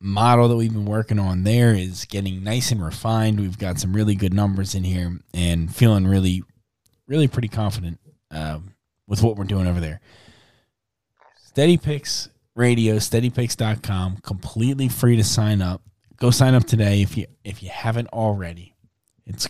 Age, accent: 20-39, American